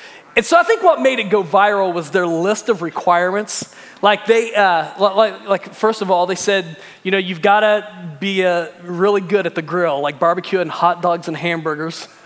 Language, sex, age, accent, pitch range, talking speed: English, male, 30-49, American, 185-230 Hz, 205 wpm